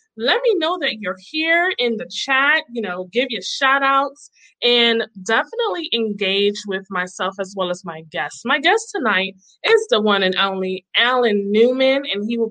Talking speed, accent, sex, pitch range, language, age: 180 wpm, American, female, 200-275 Hz, English, 20-39